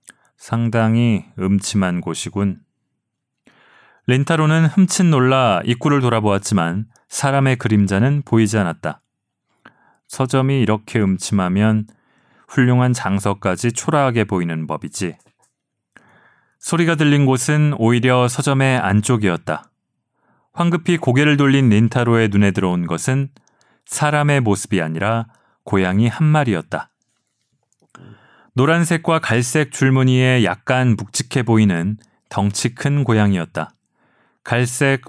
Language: Korean